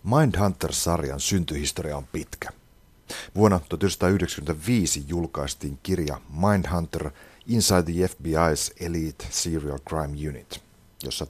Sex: male